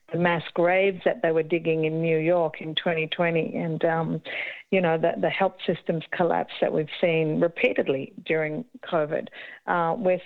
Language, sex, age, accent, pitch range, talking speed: English, female, 50-69, Australian, 165-195 Hz, 170 wpm